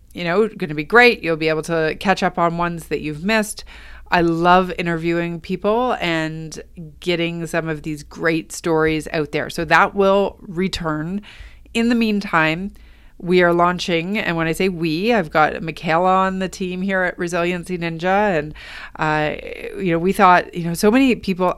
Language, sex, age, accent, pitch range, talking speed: English, female, 30-49, American, 160-190 Hz, 180 wpm